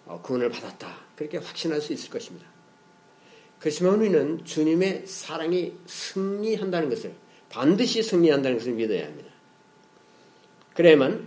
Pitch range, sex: 140-180 Hz, male